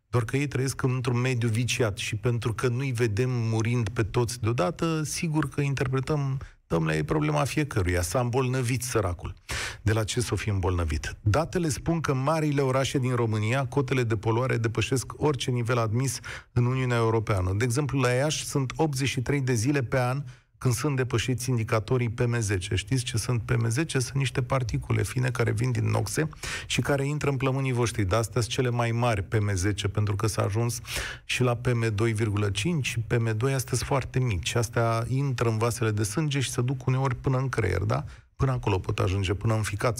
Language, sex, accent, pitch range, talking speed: Romanian, male, native, 110-135 Hz, 185 wpm